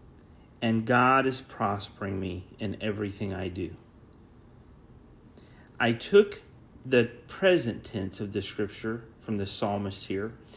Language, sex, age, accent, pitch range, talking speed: English, male, 40-59, American, 110-145 Hz, 120 wpm